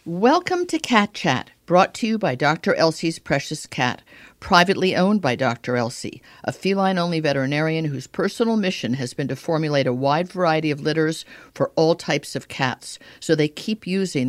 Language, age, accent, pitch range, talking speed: English, 50-69, American, 130-175 Hz, 170 wpm